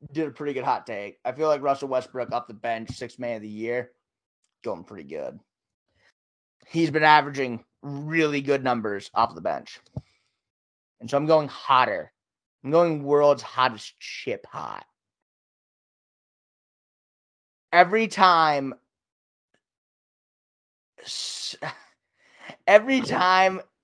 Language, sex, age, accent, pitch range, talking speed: English, male, 30-49, American, 125-170 Hz, 115 wpm